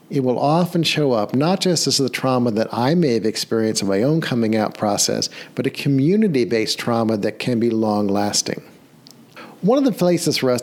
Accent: American